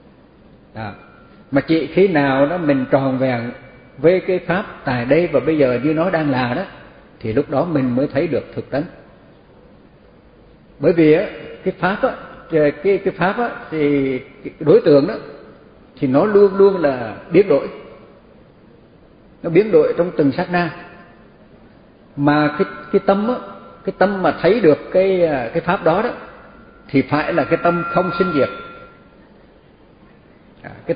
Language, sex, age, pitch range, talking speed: Vietnamese, male, 60-79, 130-175 Hz, 160 wpm